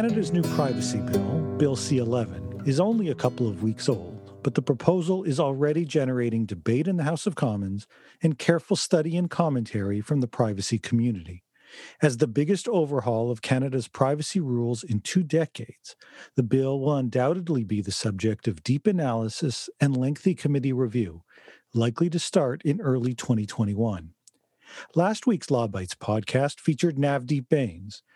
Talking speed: 155 wpm